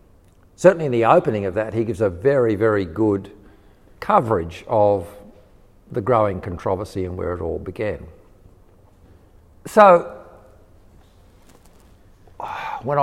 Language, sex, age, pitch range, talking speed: English, male, 50-69, 95-125 Hz, 110 wpm